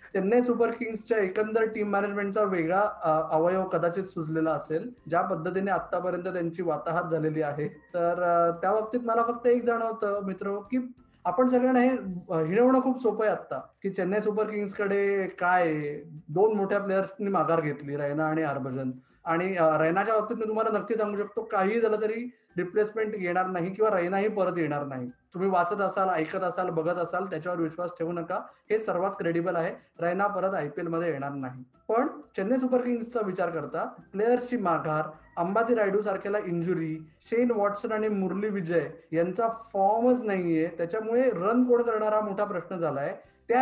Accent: native